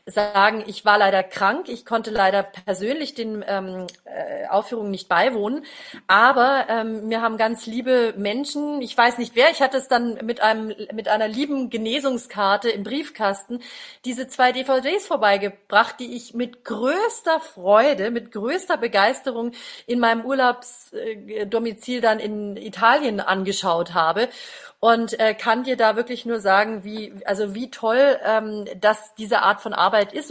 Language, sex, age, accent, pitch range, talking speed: German, female, 40-59, German, 210-265 Hz, 150 wpm